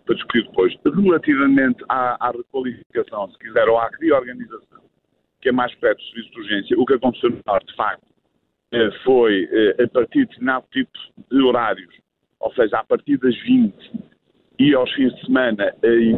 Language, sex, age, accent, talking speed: Portuguese, male, 50-69, Brazilian, 170 wpm